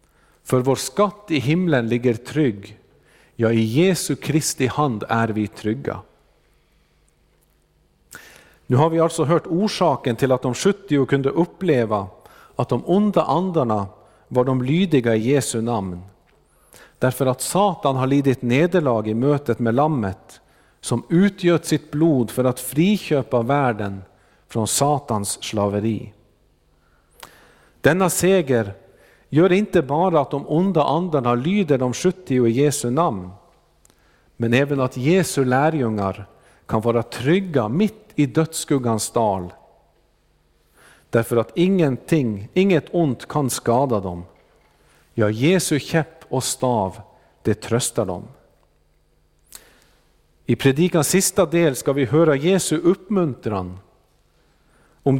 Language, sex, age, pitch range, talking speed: Swedish, male, 50-69, 110-160 Hz, 120 wpm